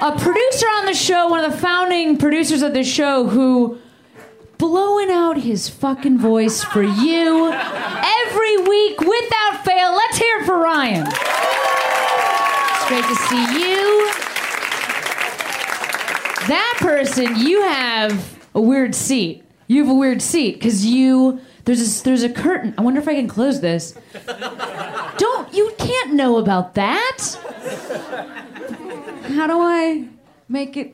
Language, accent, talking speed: English, American, 140 wpm